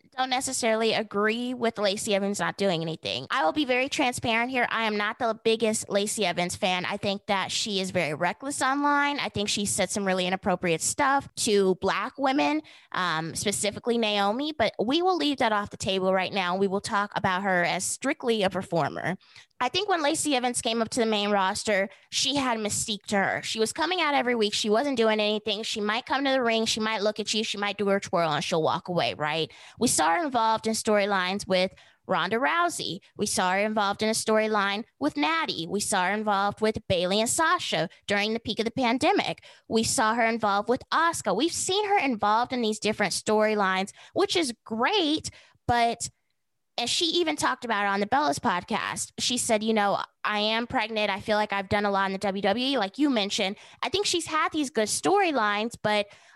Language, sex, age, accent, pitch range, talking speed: English, female, 20-39, American, 200-250 Hz, 215 wpm